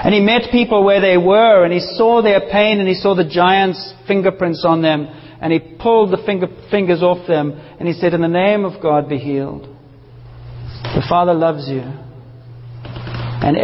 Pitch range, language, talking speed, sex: 125-180 Hz, English, 185 wpm, male